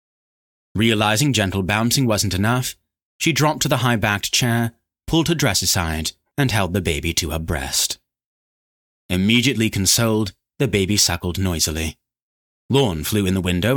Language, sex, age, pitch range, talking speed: English, male, 30-49, 90-125 Hz, 145 wpm